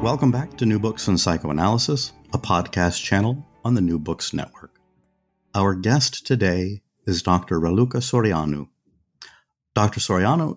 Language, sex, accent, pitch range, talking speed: English, male, American, 85-120 Hz, 135 wpm